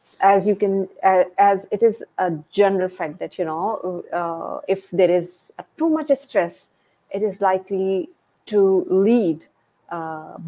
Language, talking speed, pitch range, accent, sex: English, 150 wpm, 180-225 Hz, Indian, female